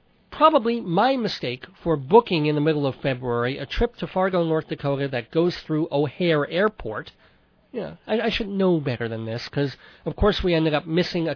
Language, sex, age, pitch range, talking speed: English, male, 40-59, 140-185 Hz, 195 wpm